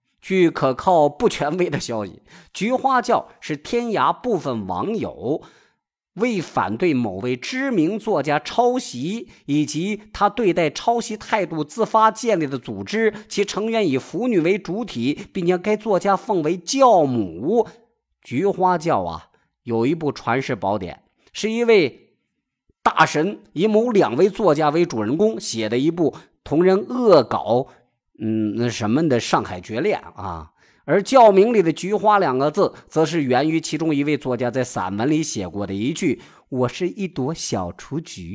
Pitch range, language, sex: 130-215 Hz, Chinese, male